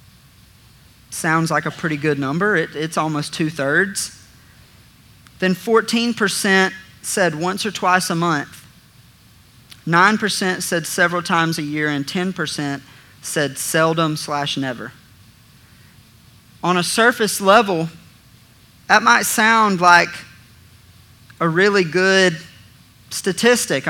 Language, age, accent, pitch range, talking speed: English, 40-59, American, 145-195 Hz, 105 wpm